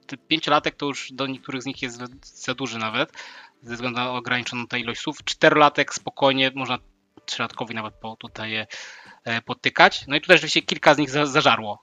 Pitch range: 120-140 Hz